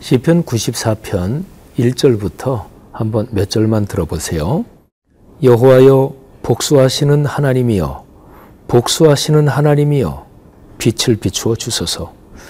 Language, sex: Korean, male